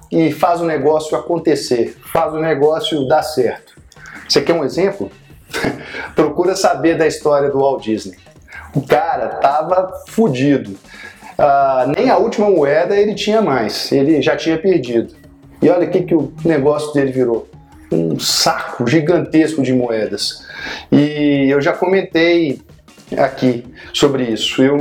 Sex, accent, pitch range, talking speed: male, Brazilian, 135-170 Hz, 140 wpm